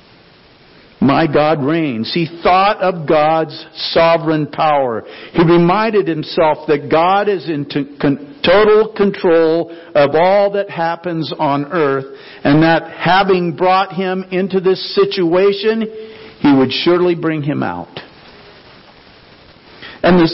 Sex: male